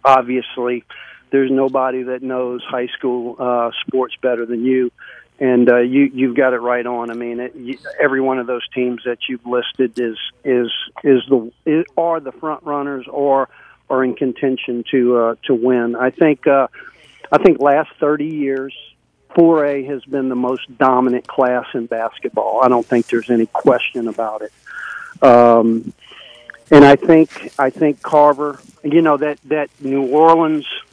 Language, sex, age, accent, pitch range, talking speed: English, male, 50-69, American, 125-150 Hz, 170 wpm